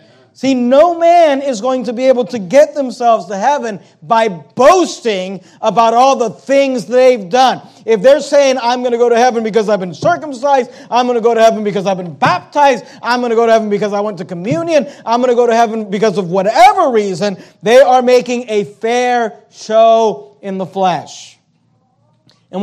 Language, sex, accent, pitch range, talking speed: English, male, American, 185-235 Hz, 200 wpm